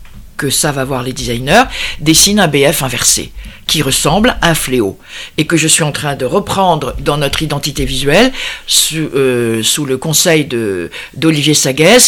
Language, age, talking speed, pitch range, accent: French, 50-69, 170 wpm, 140-180 Hz, French